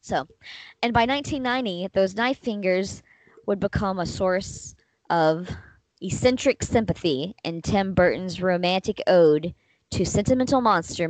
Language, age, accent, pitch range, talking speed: English, 20-39, American, 165-205 Hz, 120 wpm